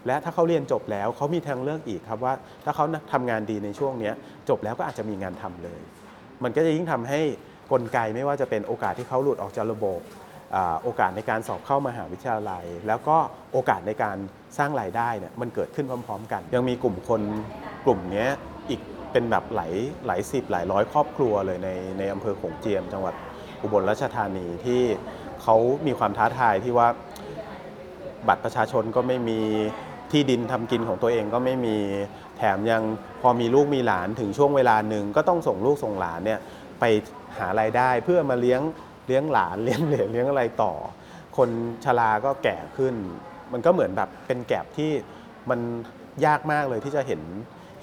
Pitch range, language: 105-135 Hz, Thai